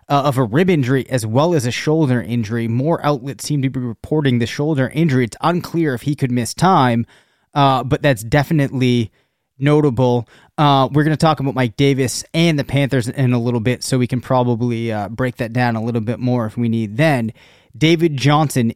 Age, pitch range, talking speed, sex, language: 30-49, 125-145 Hz, 210 wpm, male, English